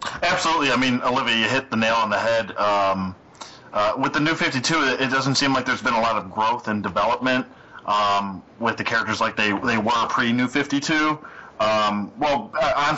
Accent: American